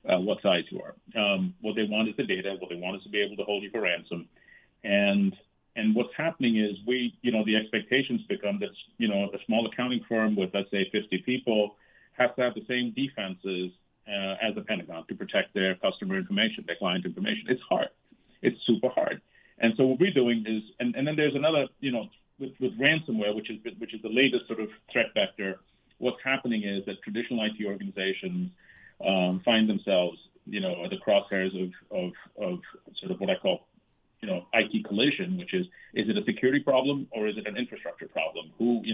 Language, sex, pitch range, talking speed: English, male, 105-135 Hz, 215 wpm